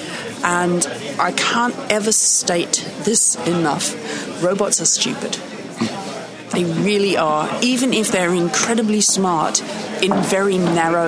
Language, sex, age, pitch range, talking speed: English, female, 40-59, 175-220 Hz, 115 wpm